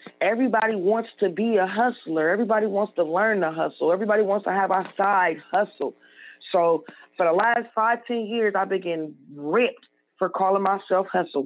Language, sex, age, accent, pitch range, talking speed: English, female, 20-39, American, 175-225 Hz, 180 wpm